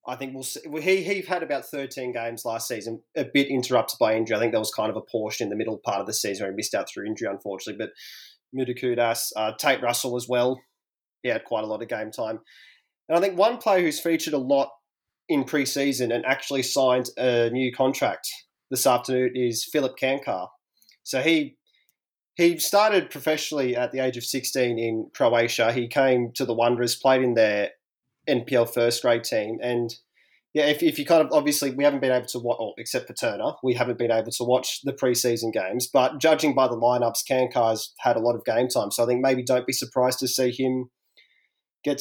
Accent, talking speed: Australian, 215 wpm